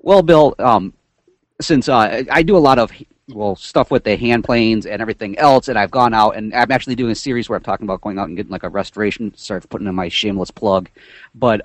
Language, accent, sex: English, American, male